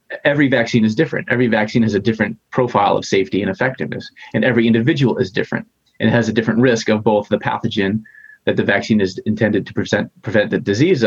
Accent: American